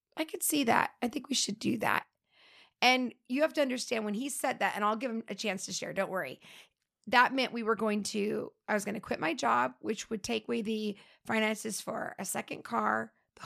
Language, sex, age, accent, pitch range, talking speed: English, female, 30-49, American, 210-250 Hz, 235 wpm